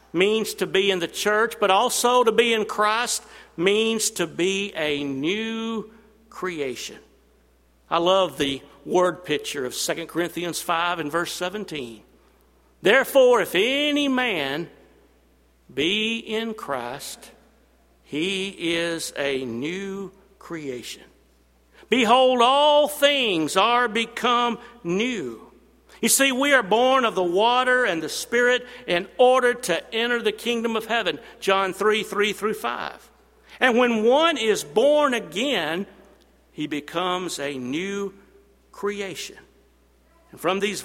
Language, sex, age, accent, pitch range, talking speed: English, male, 60-79, American, 170-240 Hz, 125 wpm